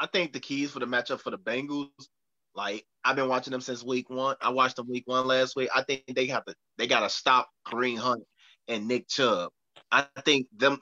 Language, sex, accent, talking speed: English, male, American, 225 wpm